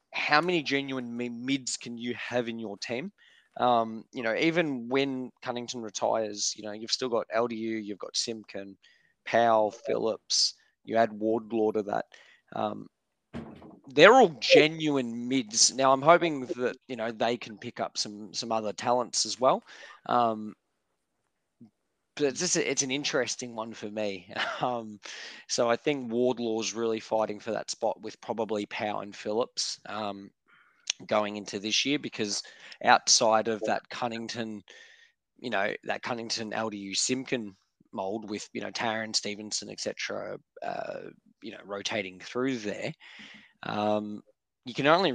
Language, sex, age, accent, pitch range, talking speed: English, male, 20-39, Australian, 105-125 Hz, 150 wpm